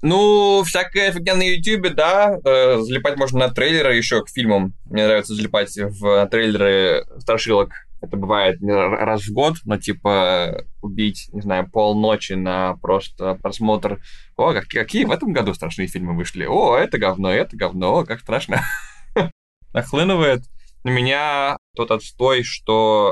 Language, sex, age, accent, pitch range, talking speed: Russian, male, 20-39, native, 95-120 Hz, 145 wpm